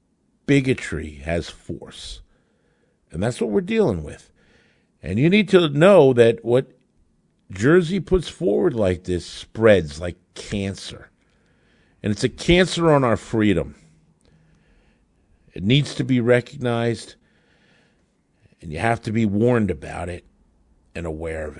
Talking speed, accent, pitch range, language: 130 wpm, American, 95-125 Hz, English